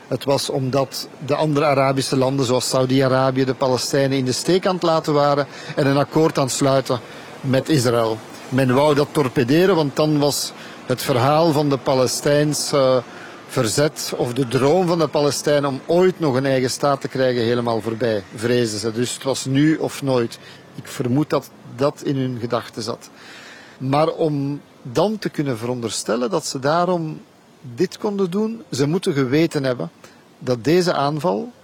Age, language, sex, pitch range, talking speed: 50-69, Dutch, male, 130-165 Hz, 170 wpm